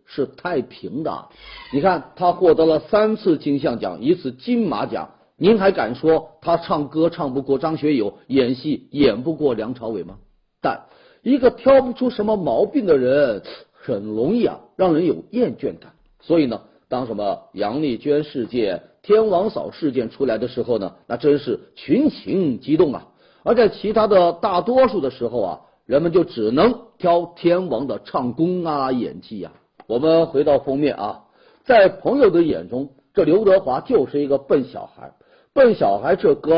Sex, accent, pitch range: male, native, 145-245 Hz